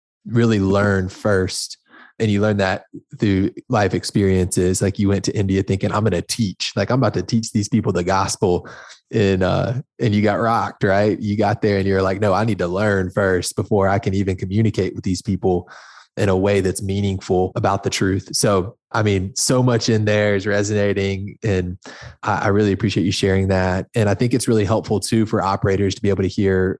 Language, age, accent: English, 20-39, American